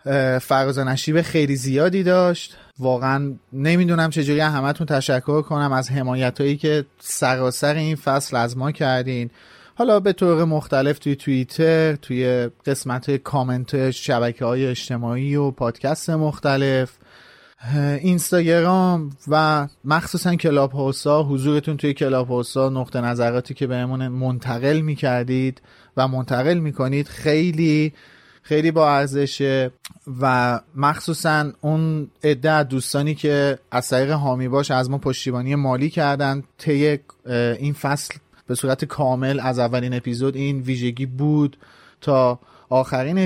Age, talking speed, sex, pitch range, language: 30-49, 120 wpm, male, 130-155 Hz, Persian